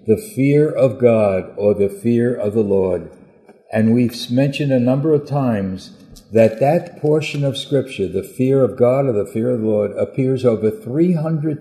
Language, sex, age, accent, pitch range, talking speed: English, male, 60-79, American, 105-130 Hz, 180 wpm